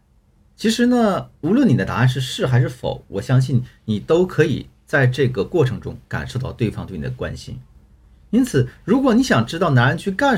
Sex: male